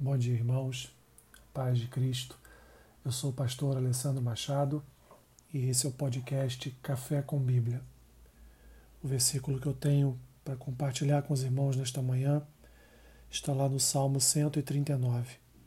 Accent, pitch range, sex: Brazilian, 125-145 Hz, male